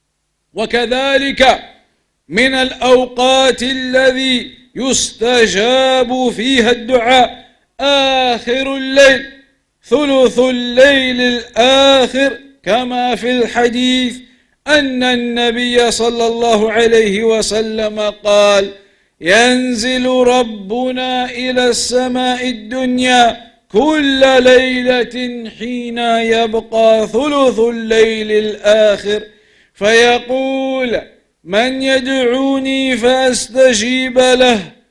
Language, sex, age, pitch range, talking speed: English, male, 50-69, 235-265 Hz, 65 wpm